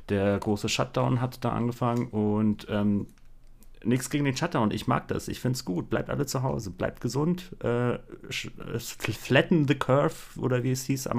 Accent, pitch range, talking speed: German, 105-120 Hz, 175 wpm